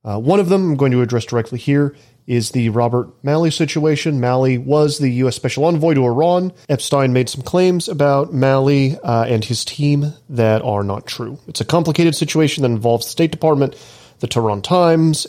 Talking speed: 190 wpm